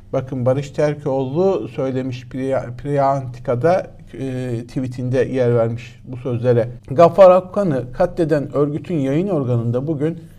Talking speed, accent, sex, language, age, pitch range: 105 wpm, native, male, Turkish, 60-79, 110-160 Hz